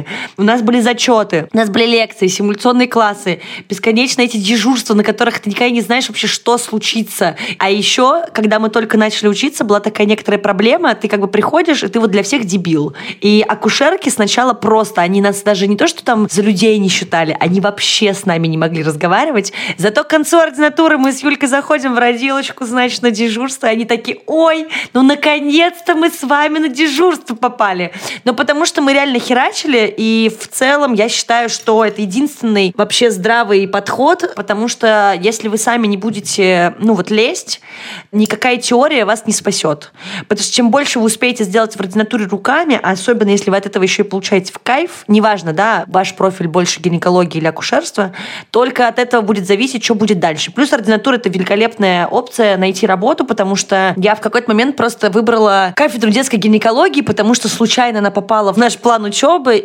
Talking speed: 185 wpm